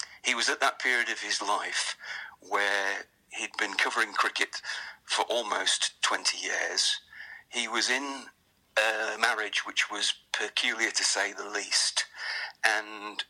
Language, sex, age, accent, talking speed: English, male, 50-69, British, 135 wpm